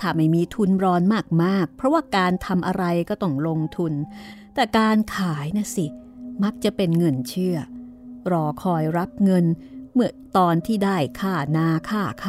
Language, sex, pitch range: Thai, female, 175-235 Hz